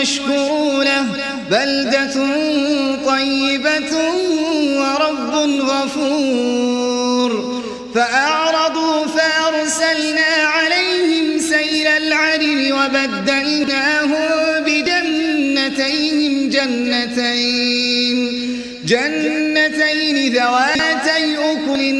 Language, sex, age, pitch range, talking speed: Arabic, male, 30-49, 265-310 Hz, 45 wpm